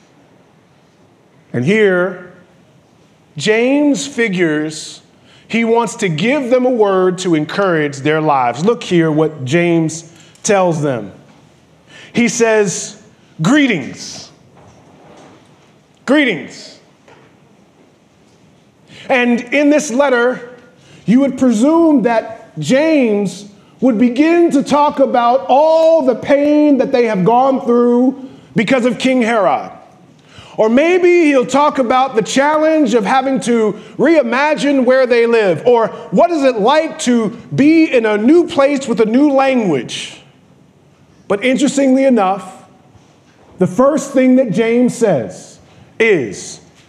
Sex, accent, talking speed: male, American, 115 wpm